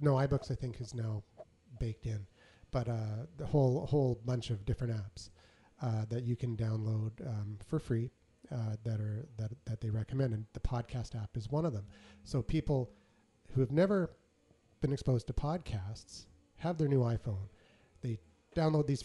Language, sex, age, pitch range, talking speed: English, male, 30-49, 110-135 Hz, 175 wpm